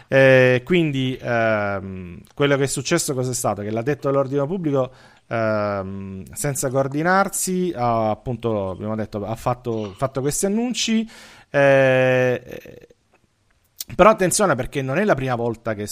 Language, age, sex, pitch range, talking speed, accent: Italian, 40-59, male, 110-130 Hz, 145 wpm, native